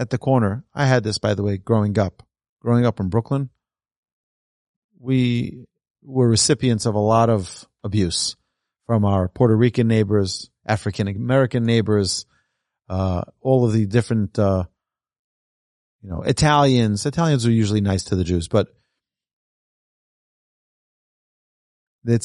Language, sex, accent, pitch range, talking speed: English, male, American, 100-125 Hz, 130 wpm